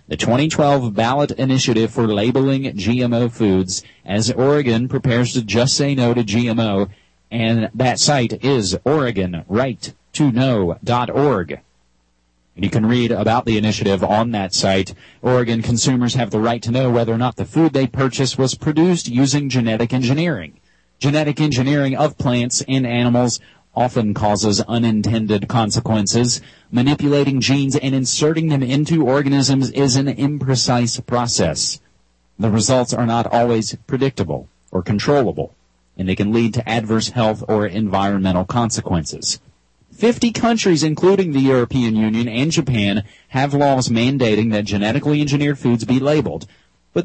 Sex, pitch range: male, 110-135 Hz